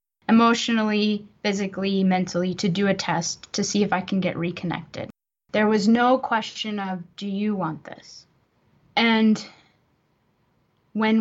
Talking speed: 135 wpm